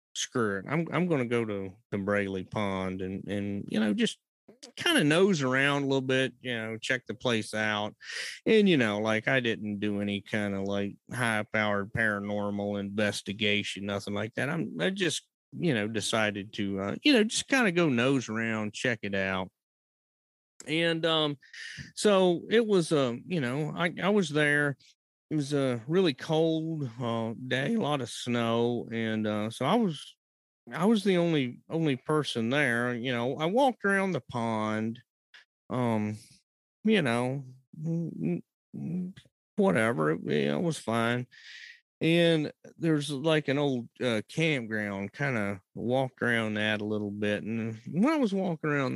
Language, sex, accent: English, male, American